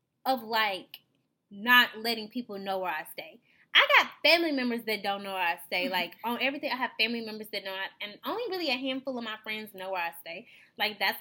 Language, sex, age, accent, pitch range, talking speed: English, female, 10-29, American, 195-260 Hz, 230 wpm